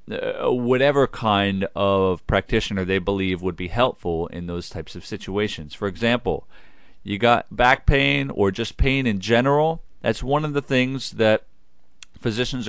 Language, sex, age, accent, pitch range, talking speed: English, male, 40-59, American, 90-120 Hz, 155 wpm